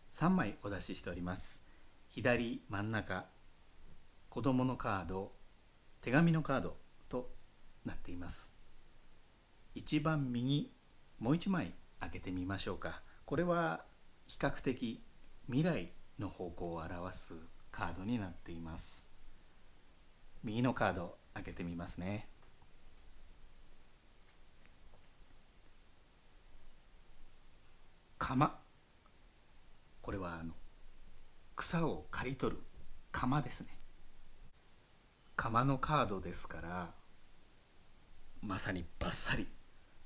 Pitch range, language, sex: 85-120 Hz, Japanese, male